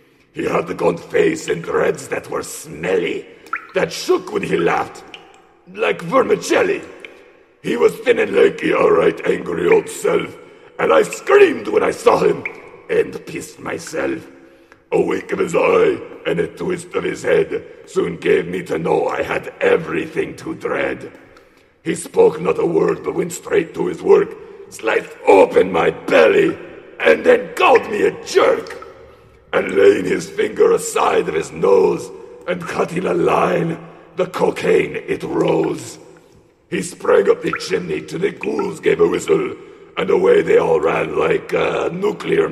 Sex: male